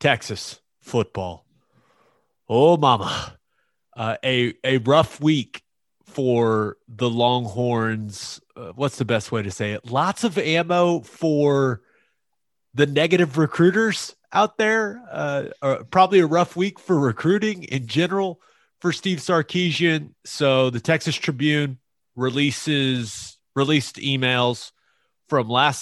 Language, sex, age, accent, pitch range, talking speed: English, male, 30-49, American, 115-155 Hz, 115 wpm